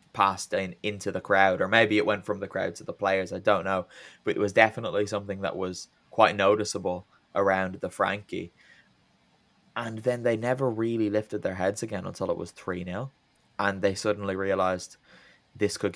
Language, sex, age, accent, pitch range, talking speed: English, male, 10-29, British, 95-110 Hz, 190 wpm